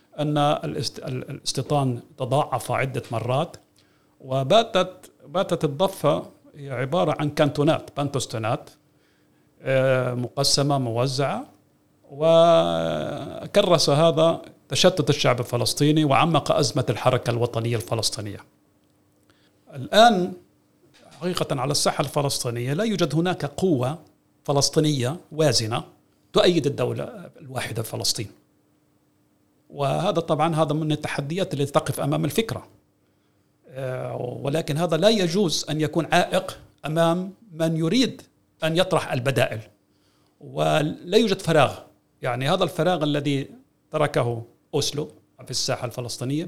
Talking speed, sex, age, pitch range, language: 95 wpm, male, 50-69, 130-165 Hz, Arabic